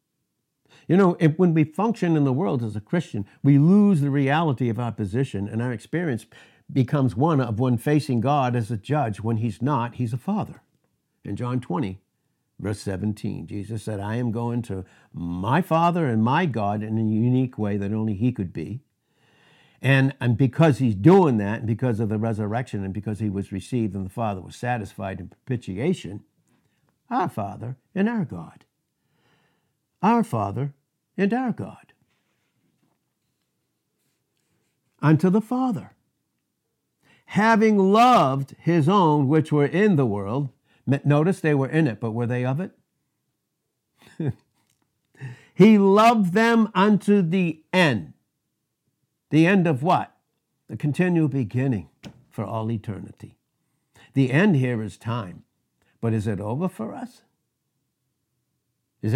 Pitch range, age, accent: 115-165 Hz, 60-79, American